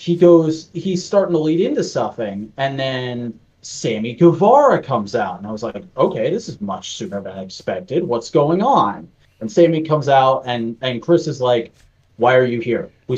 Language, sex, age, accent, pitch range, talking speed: English, male, 30-49, American, 110-135 Hz, 195 wpm